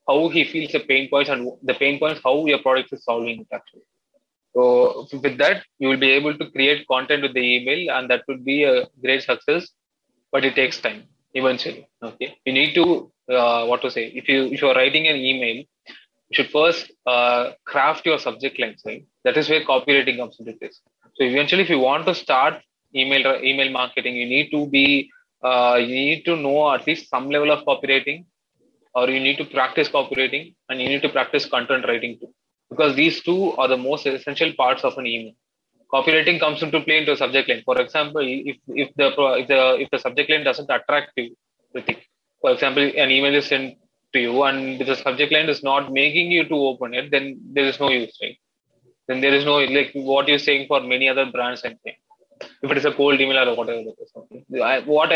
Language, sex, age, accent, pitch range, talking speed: English, male, 20-39, Indian, 130-150 Hz, 215 wpm